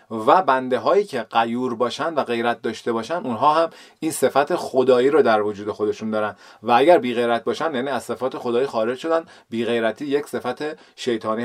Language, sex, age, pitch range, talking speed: Persian, male, 30-49, 115-150 Hz, 180 wpm